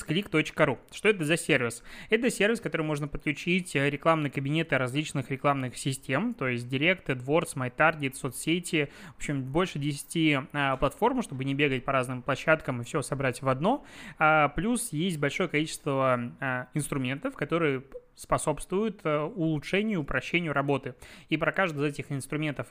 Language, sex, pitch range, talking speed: Russian, male, 135-170 Hz, 150 wpm